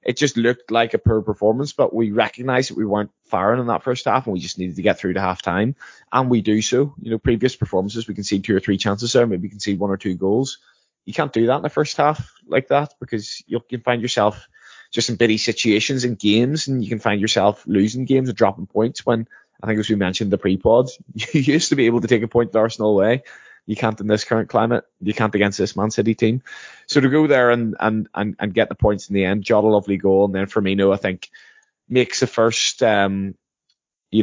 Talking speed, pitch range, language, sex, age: 255 wpm, 100-120 Hz, English, male, 20-39